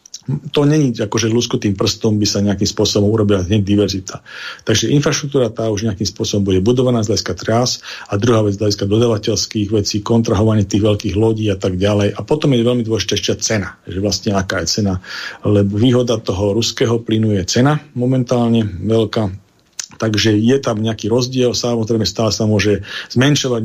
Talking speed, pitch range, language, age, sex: 165 wpm, 105-115 Hz, Slovak, 40-59, male